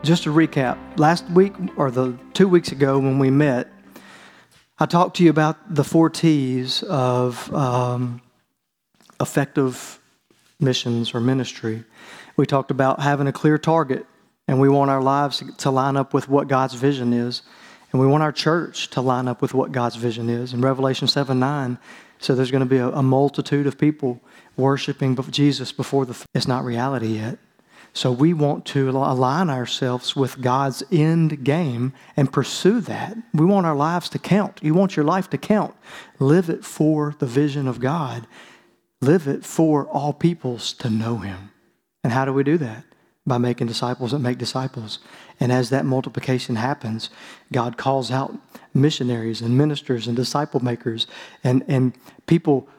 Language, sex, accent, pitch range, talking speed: English, male, American, 125-155 Hz, 170 wpm